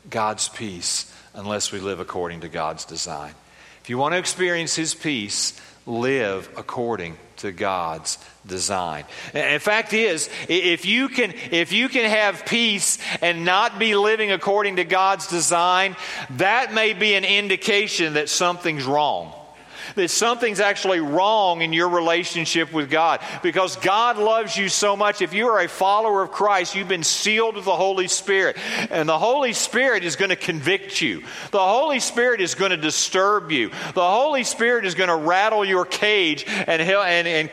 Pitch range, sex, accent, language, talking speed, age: 150-200 Hz, male, American, English, 170 wpm, 50-69